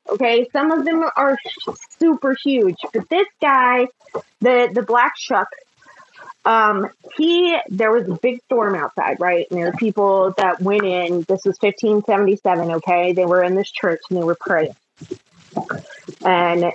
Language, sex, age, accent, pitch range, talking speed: English, female, 20-39, American, 185-270 Hz, 160 wpm